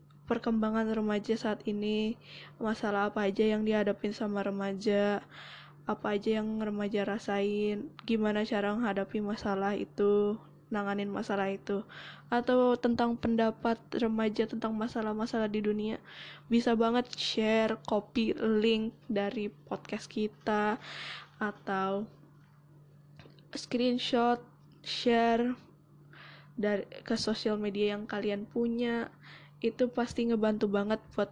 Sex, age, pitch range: female, 10-29, 200-230 Hz